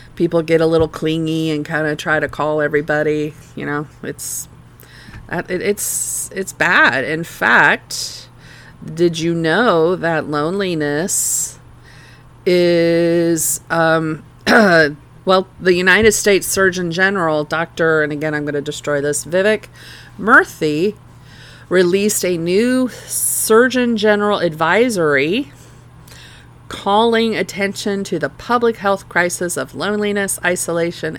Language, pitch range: English, 150-195 Hz